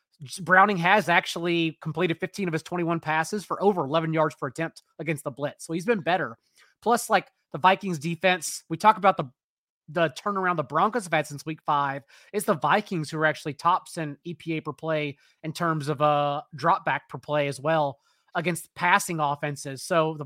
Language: English